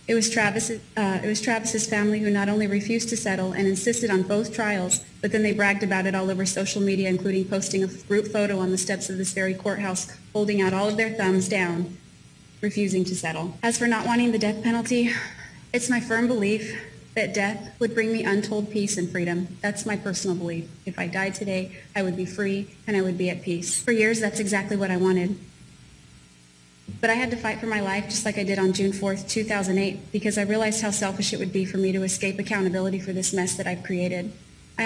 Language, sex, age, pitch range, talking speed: English, female, 30-49, 185-215 Hz, 225 wpm